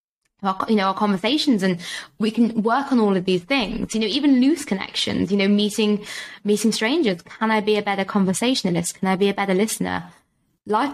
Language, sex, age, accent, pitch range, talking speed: English, female, 20-39, British, 190-230 Hz, 195 wpm